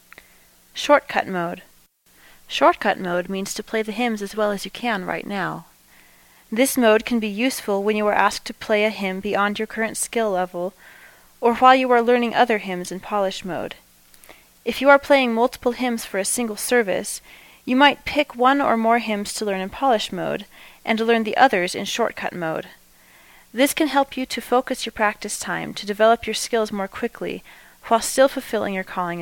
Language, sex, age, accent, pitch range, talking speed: English, female, 30-49, American, 195-245 Hz, 195 wpm